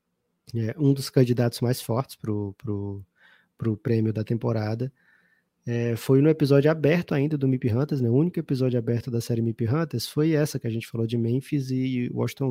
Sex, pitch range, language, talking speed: male, 115-135 Hz, Portuguese, 195 wpm